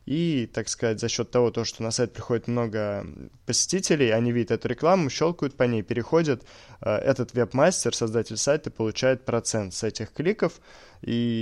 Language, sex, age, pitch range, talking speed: Russian, male, 20-39, 105-125 Hz, 160 wpm